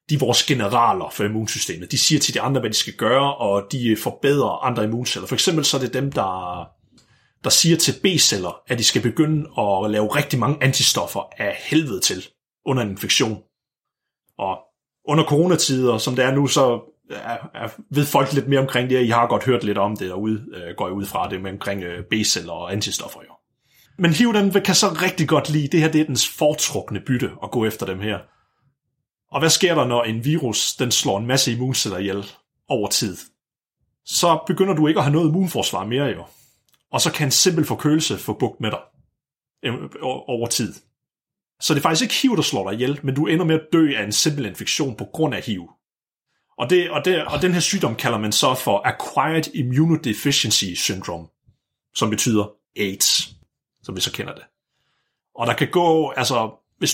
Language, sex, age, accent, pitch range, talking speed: Danish, male, 30-49, native, 110-155 Hz, 200 wpm